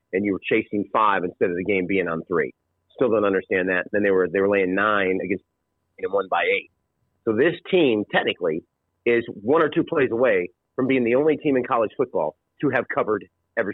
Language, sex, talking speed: English, male, 215 wpm